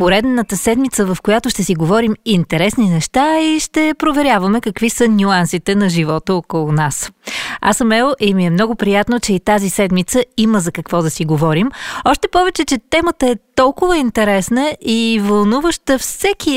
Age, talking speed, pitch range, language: 30-49, 170 wpm, 180-240 Hz, Bulgarian